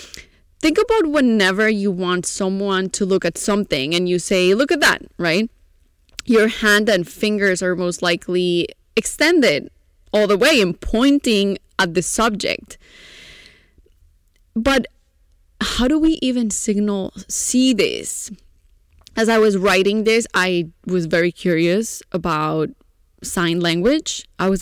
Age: 20-39